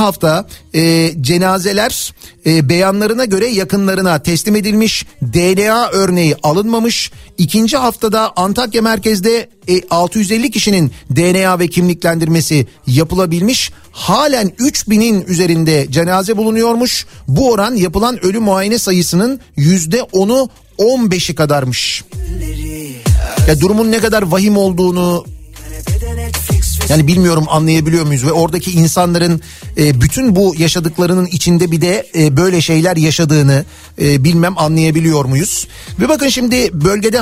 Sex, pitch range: male, 155-210 Hz